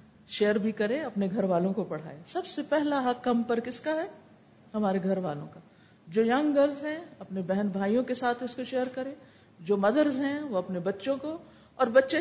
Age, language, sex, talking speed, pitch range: 50-69, Urdu, female, 210 wpm, 200-255 Hz